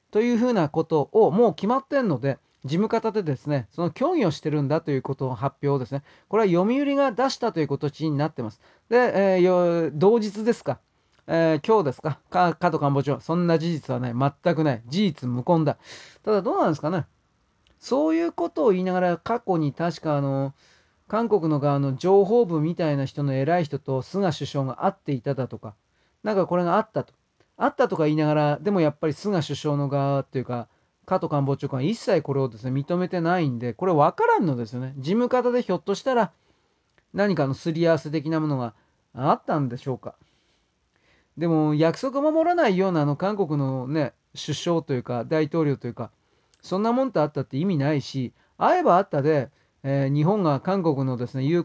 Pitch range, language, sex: 140-195 Hz, Japanese, male